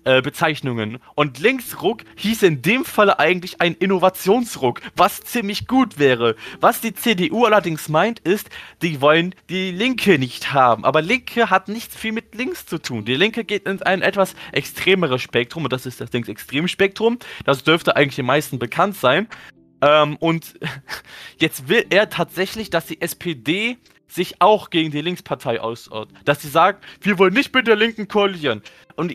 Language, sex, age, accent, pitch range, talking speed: German, male, 20-39, German, 150-215 Hz, 165 wpm